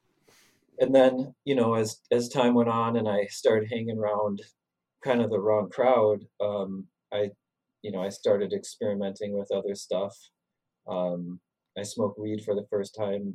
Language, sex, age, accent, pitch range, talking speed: English, male, 30-49, American, 100-110 Hz, 165 wpm